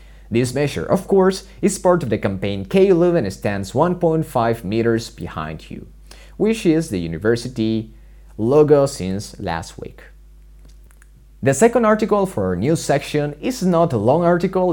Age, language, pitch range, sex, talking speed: 30-49, English, 105-165 Hz, male, 145 wpm